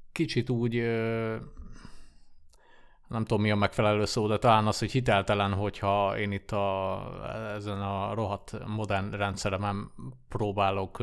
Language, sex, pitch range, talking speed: Hungarian, male, 100-115 Hz, 125 wpm